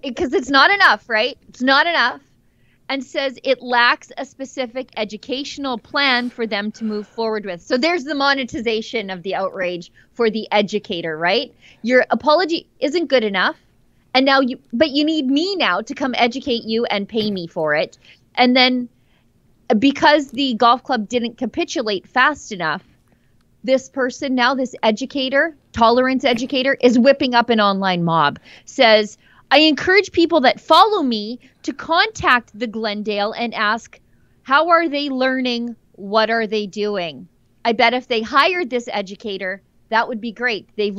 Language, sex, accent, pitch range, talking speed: English, female, American, 215-275 Hz, 160 wpm